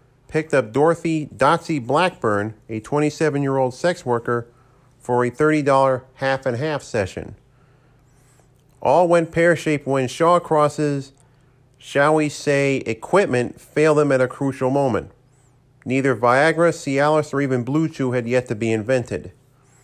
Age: 40-59